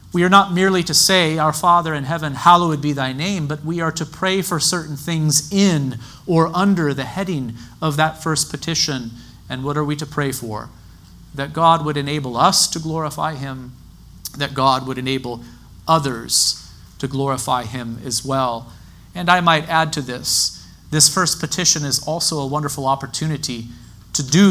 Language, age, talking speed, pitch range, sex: English, 40-59, 175 wpm, 135-180 Hz, male